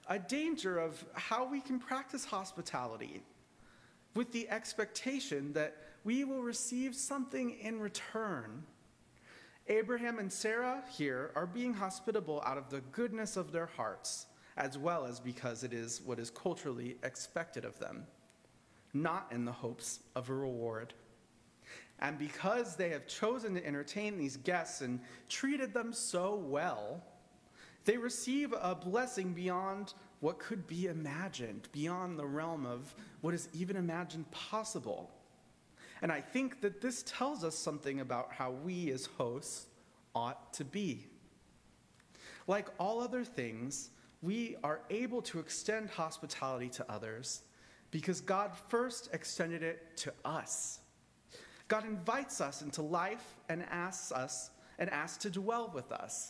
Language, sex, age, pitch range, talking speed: English, male, 30-49, 140-220 Hz, 140 wpm